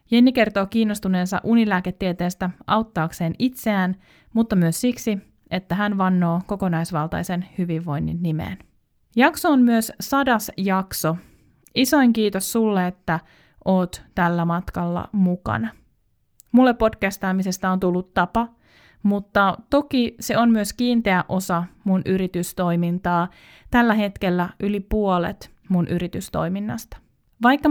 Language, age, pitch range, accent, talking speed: Finnish, 20-39, 175-215 Hz, native, 105 wpm